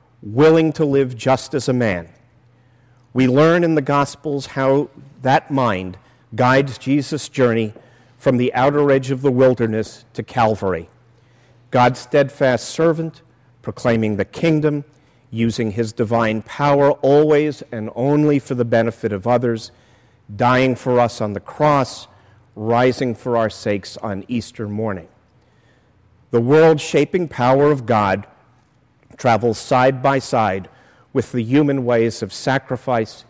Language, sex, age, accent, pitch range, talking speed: English, male, 50-69, American, 115-140 Hz, 130 wpm